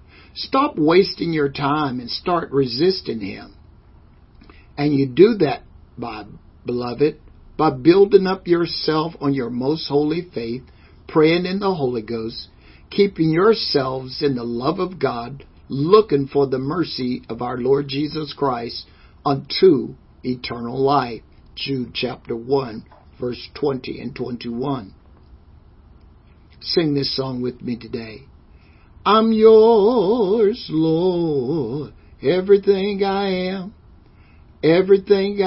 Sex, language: male, English